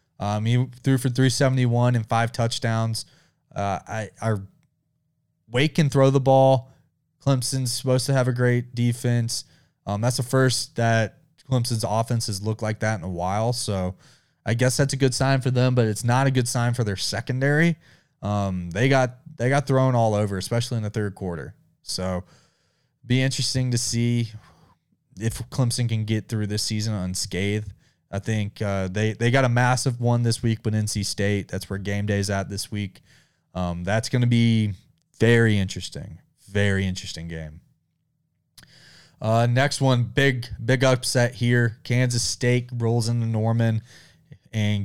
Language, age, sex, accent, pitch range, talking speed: English, 20-39, male, American, 105-135 Hz, 165 wpm